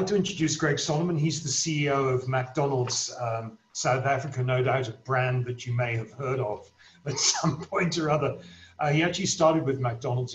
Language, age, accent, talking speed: English, 40-59, British, 190 wpm